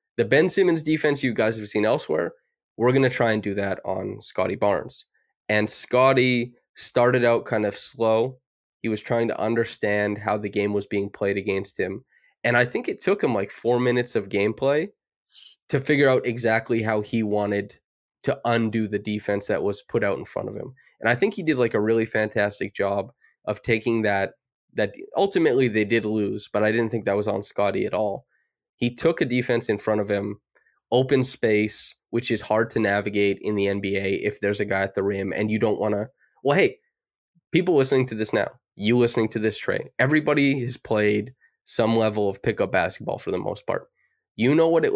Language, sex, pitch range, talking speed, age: English, male, 105-130 Hz, 205 wpm, 20-39